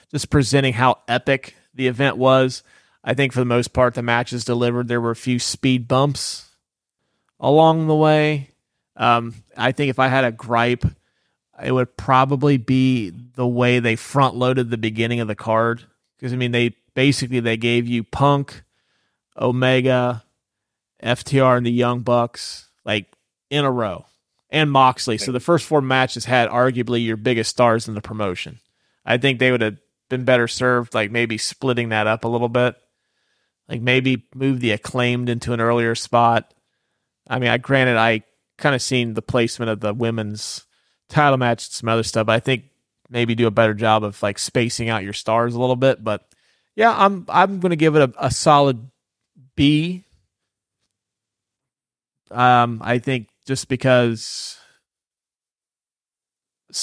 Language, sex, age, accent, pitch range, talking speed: English, male, 30-49, American, 115-130 Hz, 165 wpm